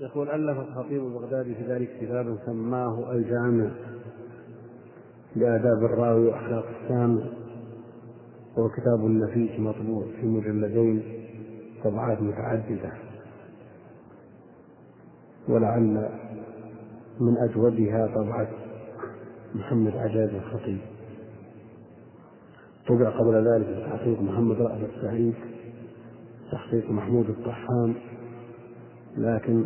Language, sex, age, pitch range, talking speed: Arabic, male, 50-69, 110-120 Hz, 80 wpm